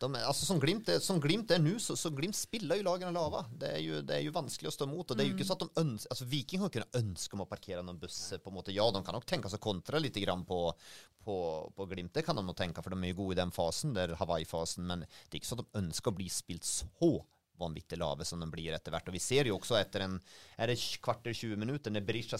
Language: English